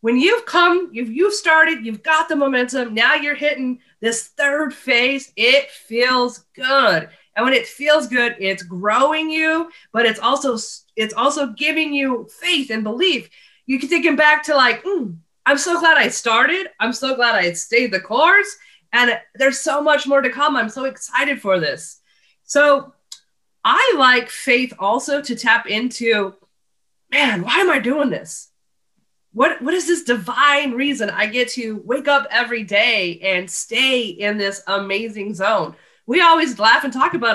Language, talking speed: English, 170 wpm